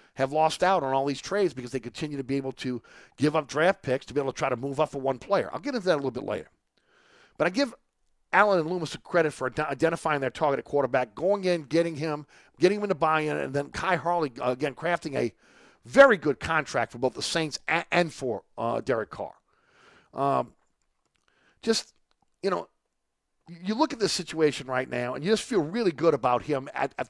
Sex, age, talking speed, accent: male, 40-59, 220 wpm, American